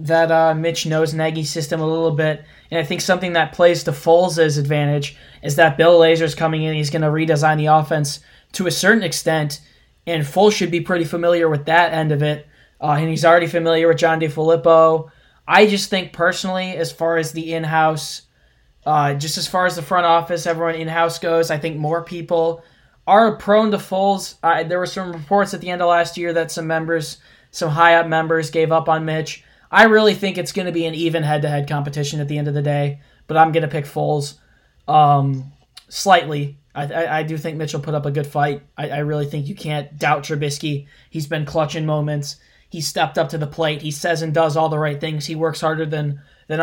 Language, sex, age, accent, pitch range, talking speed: English, male, 10-29, American, 150-170 Hz, 215 wpm